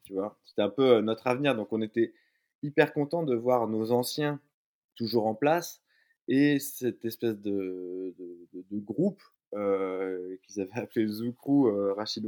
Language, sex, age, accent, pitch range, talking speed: French, male, 20-39, French, 105-135 Hz, 160 wpm